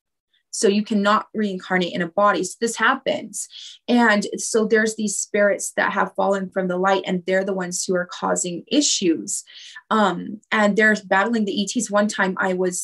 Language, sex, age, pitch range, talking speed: English, female, 20-39, 185-215 Hz, 180 wpm